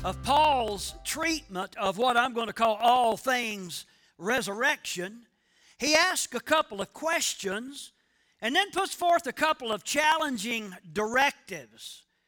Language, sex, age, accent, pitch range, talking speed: English, male, 50-69, American, 220-300 Hz, 130 wpm